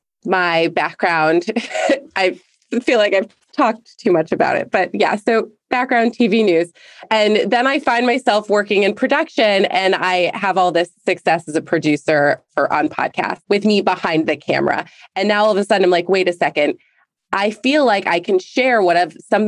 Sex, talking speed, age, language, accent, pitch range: female, 190 wpm, 20-39, English, American, 170-215 Hz